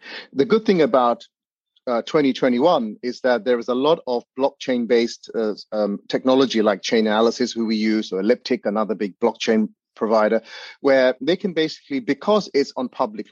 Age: 30-49